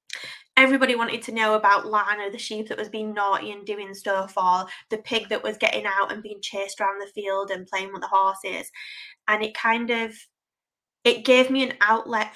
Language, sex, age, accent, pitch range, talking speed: English, female, 20-39, British, 195-225 Hz, 205 wpm